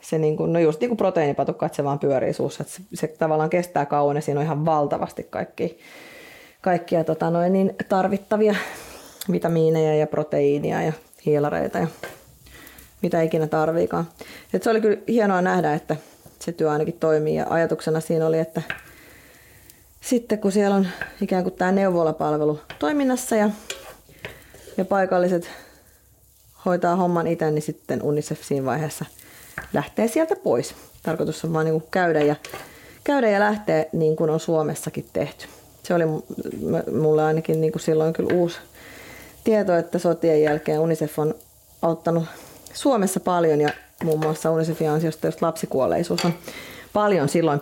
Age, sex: 30-49, female